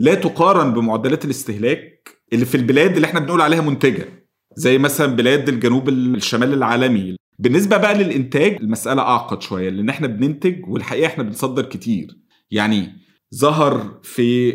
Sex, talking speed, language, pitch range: male, 140 wpm, Arabic, 115-170 Hz